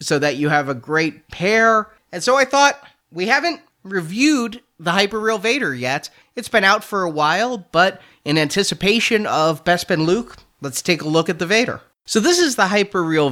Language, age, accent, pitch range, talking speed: English, 30-49, American, 140-185 Hz, 190 wpm